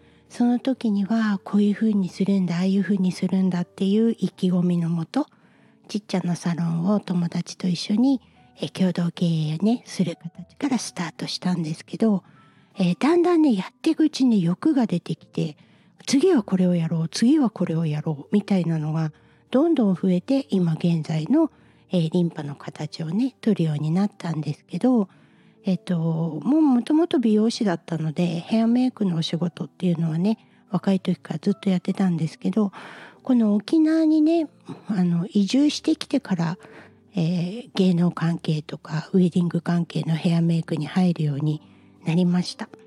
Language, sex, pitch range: Japanese, female, 170-225 Hz